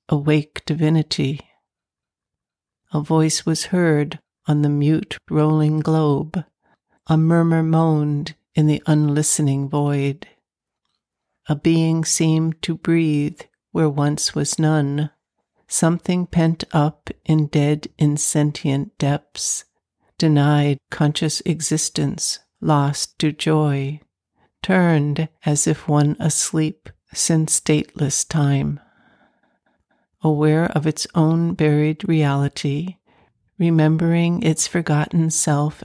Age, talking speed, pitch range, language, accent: 60-79, 95 wpm, 145-160 Hz, English, American